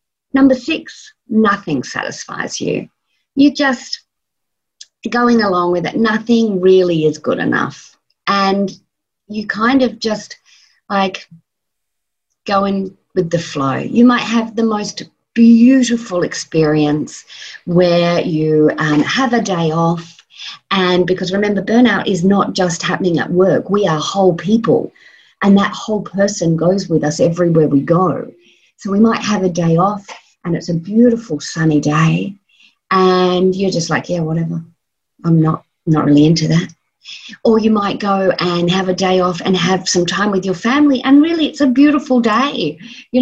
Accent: Australian